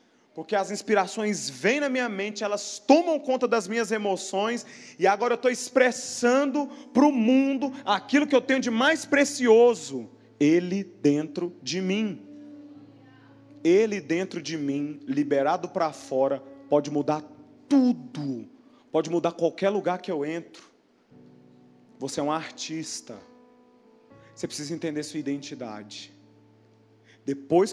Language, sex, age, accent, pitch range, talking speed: Portuguese, male, 30-49, Brazilian, 150-230 Hz, 130 wpm